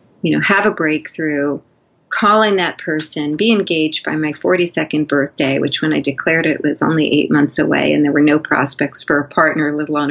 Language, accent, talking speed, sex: English, American, 200 wpm, female